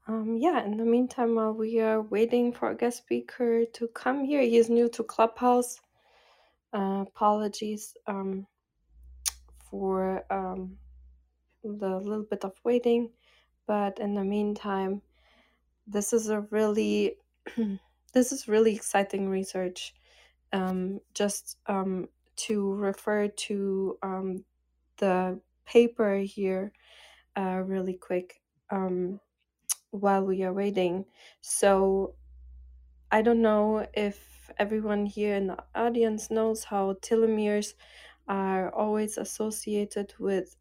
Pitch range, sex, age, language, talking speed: 190-220 Hz, female, 20-39, English, 120 wpm